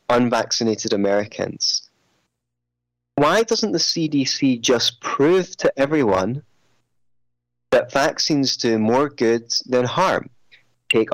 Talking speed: 95 wpm